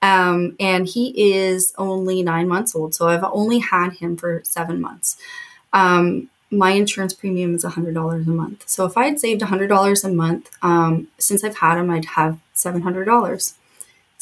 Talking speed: 185 wpm